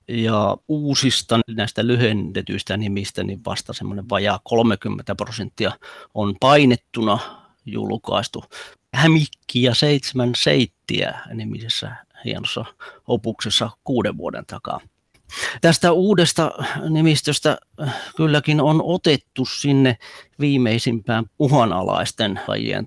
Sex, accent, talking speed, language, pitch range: male, native, 85 wpm, Finnish, 110-130 Hz